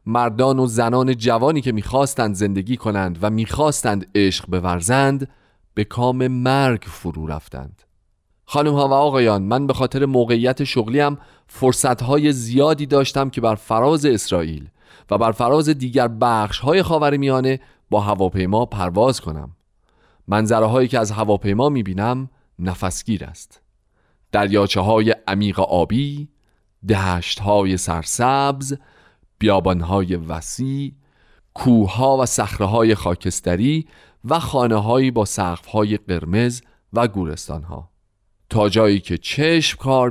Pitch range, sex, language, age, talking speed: 100-130 Hz, male, Persian, 40-59, 110 wpm